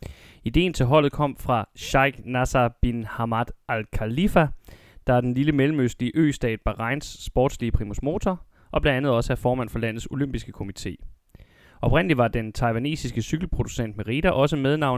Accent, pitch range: native, 110-140 Hz